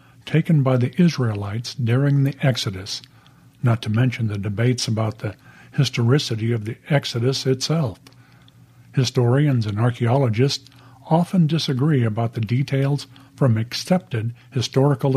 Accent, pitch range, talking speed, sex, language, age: American, 120-145 Hz, 120 wpm, male, English, 50-69